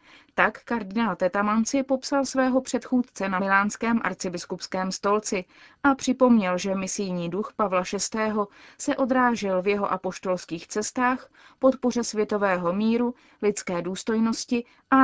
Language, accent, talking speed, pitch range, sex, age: Czech, native, 115 wpm, 185-230 Hz, female, 30-49